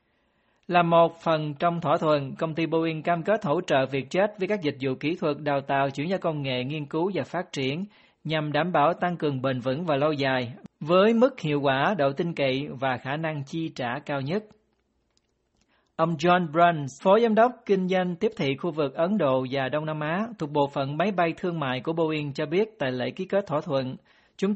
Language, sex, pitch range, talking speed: Vietnamese, male, 140-185 Hz, 225 wpm